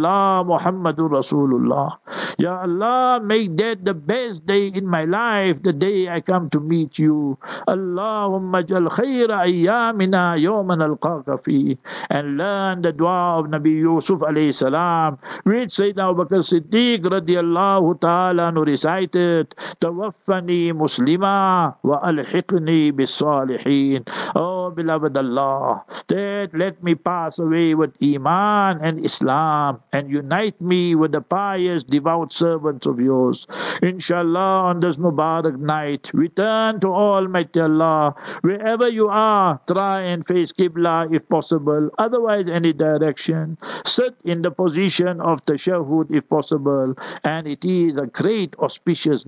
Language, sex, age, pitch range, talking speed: English, male, 50-69, 155-190 Hz, 130 wpm